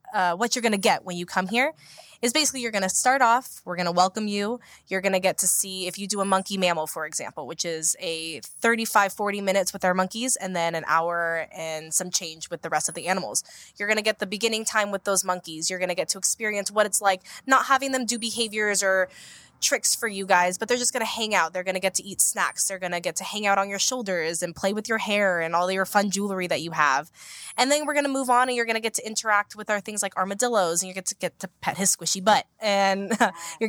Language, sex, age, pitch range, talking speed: English, female, 10-29, 175-220 Hz, 275 wpm